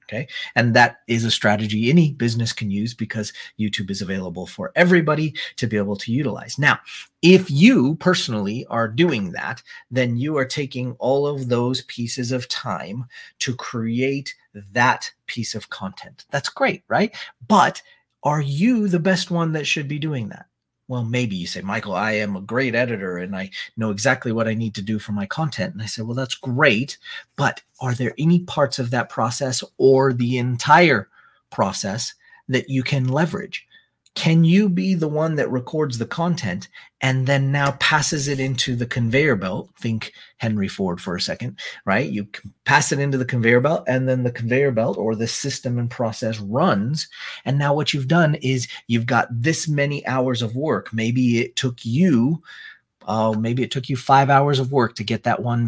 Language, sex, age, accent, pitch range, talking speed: English, male, 40-59, American, 115-145 Hz, 190 wpm